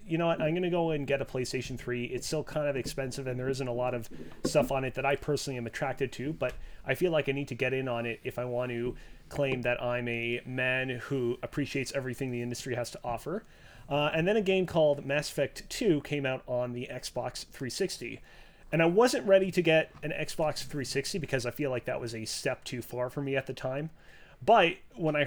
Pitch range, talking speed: 120-155 Hz, 240 wpm